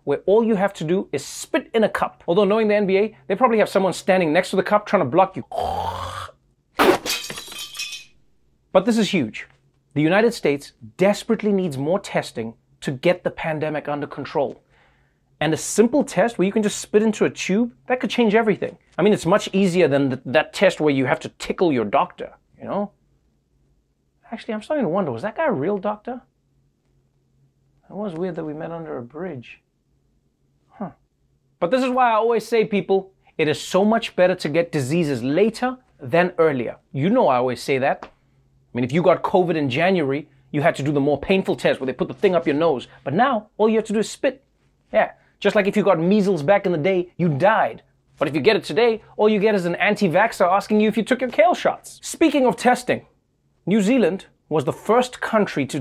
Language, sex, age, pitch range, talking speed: English, male, 30-49, 150-215 Hz, 215 wpm